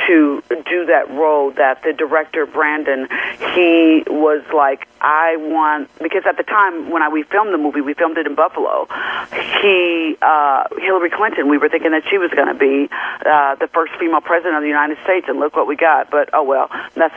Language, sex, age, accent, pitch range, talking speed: English, female, 40-59, American, 150-170 Hz, 205 wpm